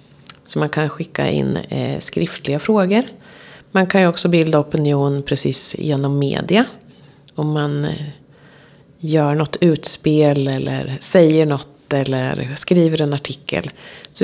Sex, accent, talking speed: female, native, 120 wpm